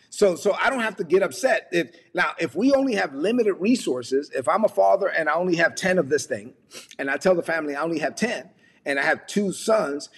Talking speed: 250 wpm